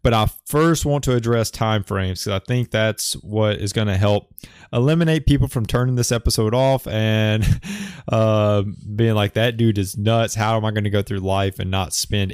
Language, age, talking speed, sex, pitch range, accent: English, 20-39, 205 wpm, male, 100-125 Hz, American